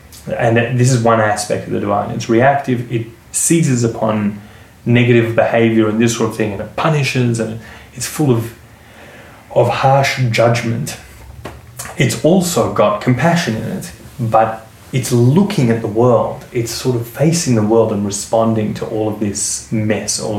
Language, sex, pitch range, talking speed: English, male, 100-120 Hz, 165 wpm